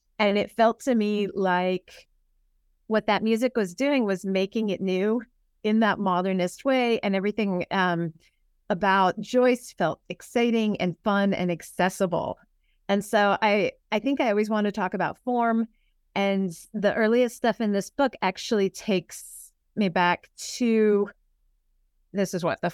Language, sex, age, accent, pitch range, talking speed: English, female, 30-49, American, 180-215 Hz, 155 wpm